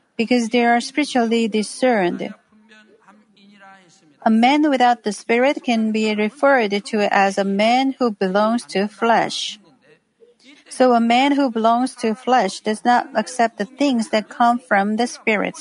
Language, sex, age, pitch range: Korean, female, 40-59, 215-270 Hz